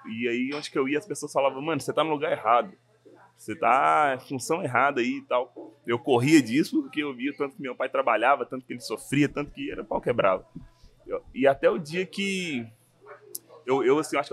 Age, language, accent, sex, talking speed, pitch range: 20-39, English, Brazilian, male, 220 wpm, 125-170 Hz